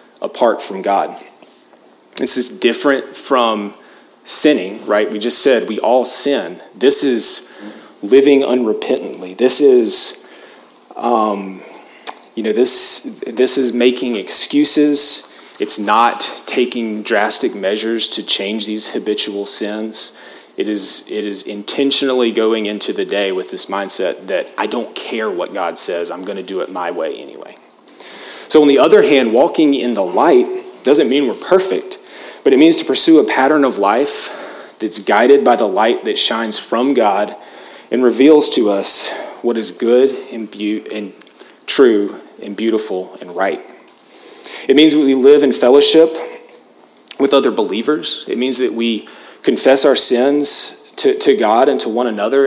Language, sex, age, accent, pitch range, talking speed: English, male, 30-49, American, 110-160 Hz, 155 wpm